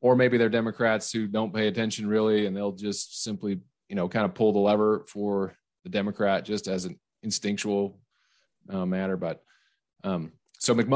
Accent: American